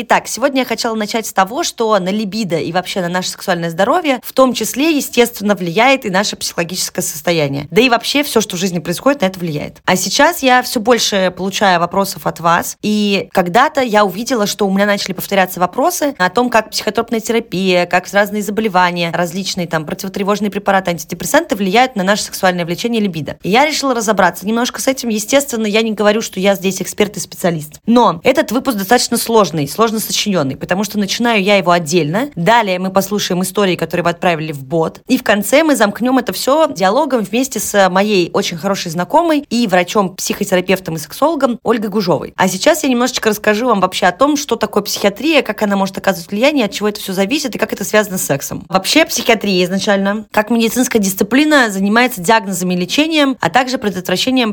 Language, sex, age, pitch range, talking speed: Russian, female, 20-39, 185-235 Hz, 195 wpm